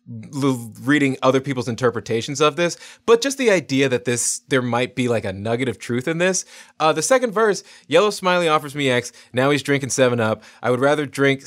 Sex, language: male, English